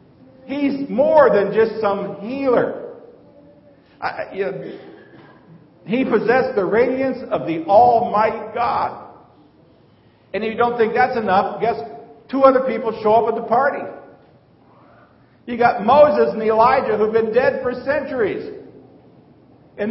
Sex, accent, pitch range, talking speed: male, American, 185-255 Hz, 125 wpm